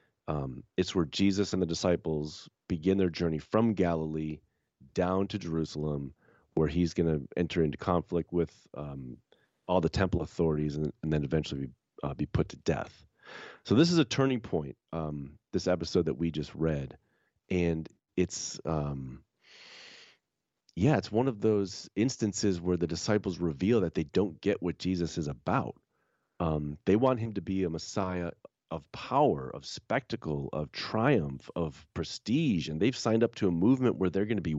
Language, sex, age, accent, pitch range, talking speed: English, male, 30-49, American, 75-95 Hz, 175 wpm